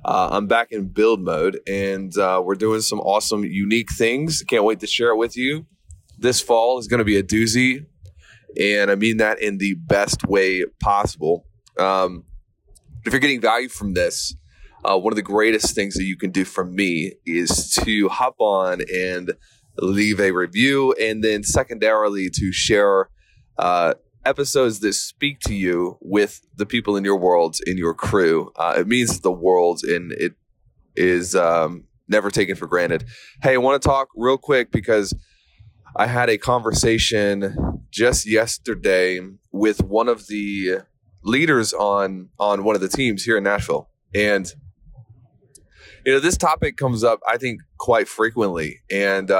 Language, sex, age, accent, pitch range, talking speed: English, male, 20-39, American, 95-115 Hz, 170 wpm